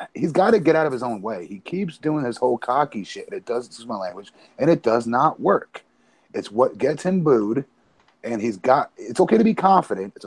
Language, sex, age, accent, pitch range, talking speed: English, male, 30-49, American, 105-170 Hz, 240 wpm